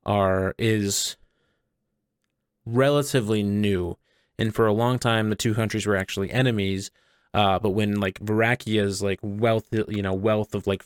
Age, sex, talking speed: 20-39, male, 150 wpm